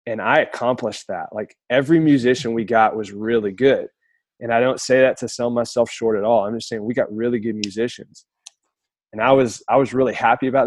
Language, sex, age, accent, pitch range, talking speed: English, male, 20-39, American, 110-145 Hz, 220 wpm